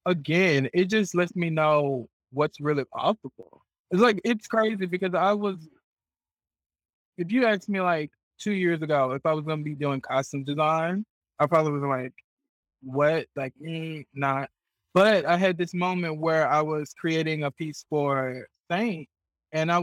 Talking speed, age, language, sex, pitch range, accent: 170 wpm, 20-39, English, male, 135-170 Hz, American